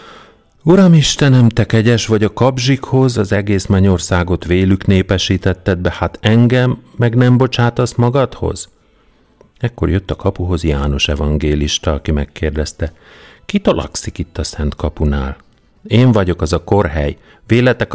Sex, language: male, Hungarian